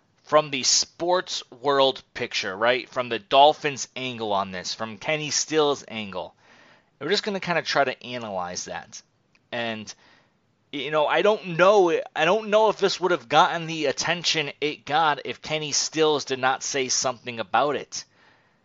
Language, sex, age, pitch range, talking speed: English, male, 30-49, 120-155 Hz, 175 wpm